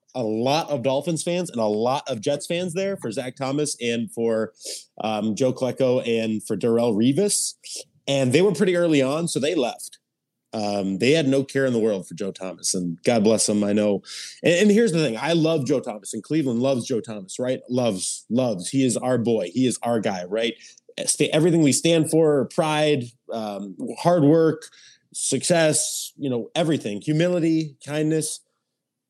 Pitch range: 120-155 Hz